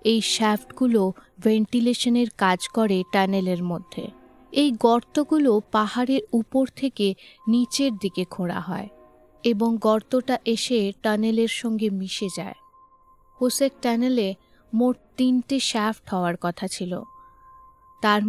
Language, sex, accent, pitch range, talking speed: Bengali, female, native, 200-250 Hz, 105 wpm